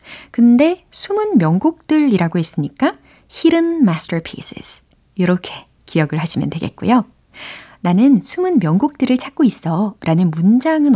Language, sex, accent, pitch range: Korean, female, native, 165-245 Hz